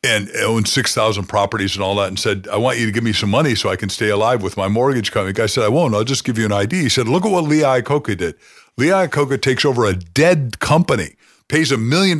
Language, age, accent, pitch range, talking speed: English, 50-69, American, 110-145 Hz, 270 wpm